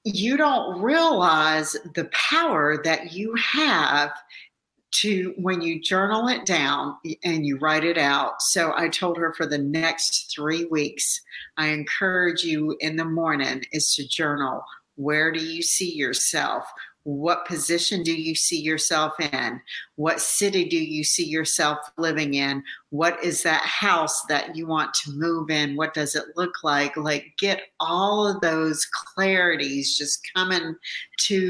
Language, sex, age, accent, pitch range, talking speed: English, female, 50-69, American, 145-170 Hz, 155 wpm